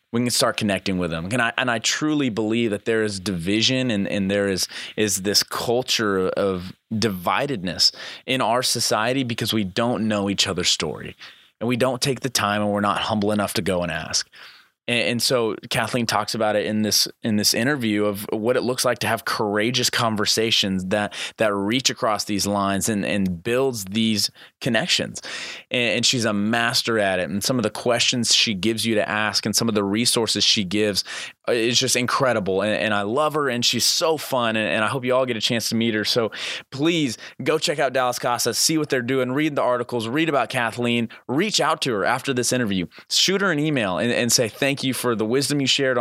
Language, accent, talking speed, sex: English, American, 215 wpm, male